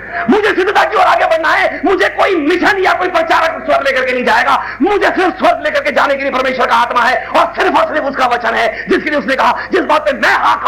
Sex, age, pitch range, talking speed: male, 50-69, 235-335 Hz, 210 wpm